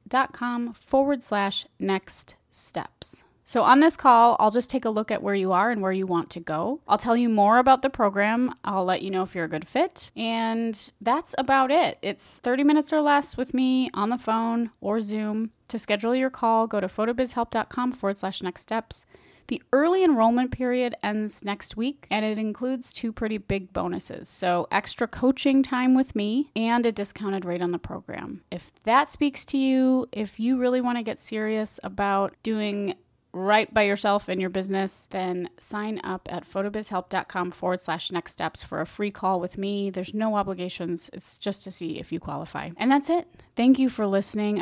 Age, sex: 20-39, female